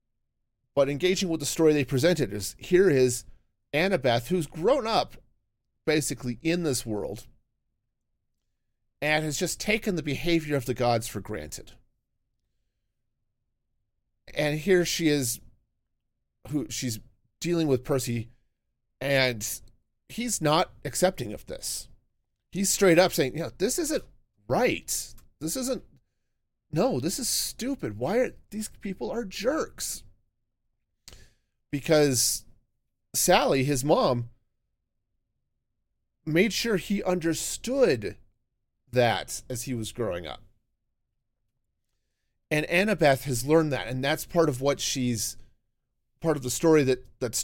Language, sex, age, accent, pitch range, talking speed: English, male, 40-59, American, 115-155 Hz, 120 wpm